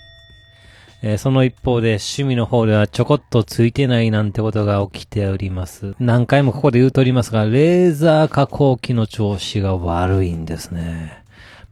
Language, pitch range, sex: Japanese, 105-130 Hz, male